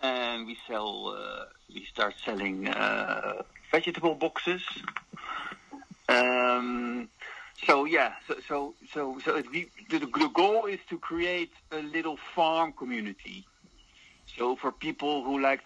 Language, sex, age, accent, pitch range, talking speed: English, male, 50-69, Dutch, 130-205 Hz, 125 wpm